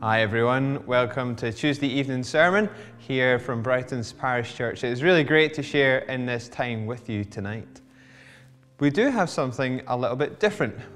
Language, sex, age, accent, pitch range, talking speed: English, male, 20-39, British, 115-150 Hz, 175 wpm